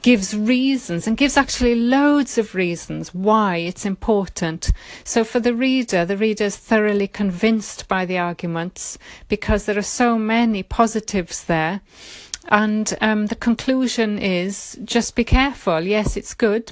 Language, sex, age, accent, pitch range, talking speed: English, female, 30-49, British, 195-240 Hz, 145 wpm